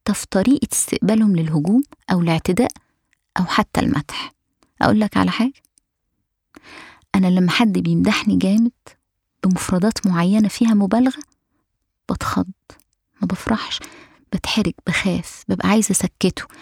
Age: 20-39